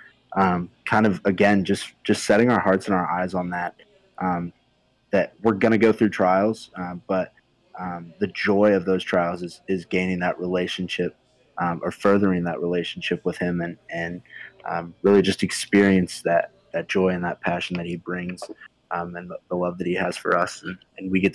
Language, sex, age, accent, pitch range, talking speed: English, male, 20-39, American, 90-100 Hz, 200 wpm